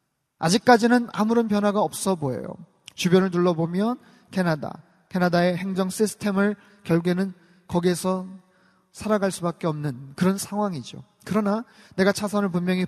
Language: Korean